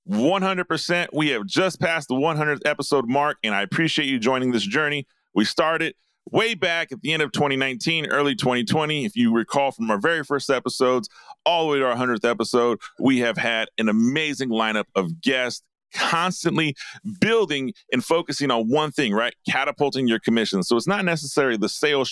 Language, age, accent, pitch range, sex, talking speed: English, 40-59, American, 125-170 Hz, male, 185 wpm